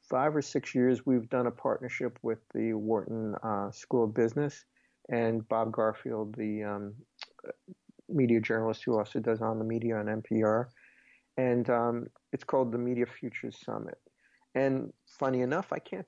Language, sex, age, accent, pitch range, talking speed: English, male, 50-69, American, 115-130 Hz, 160 wpm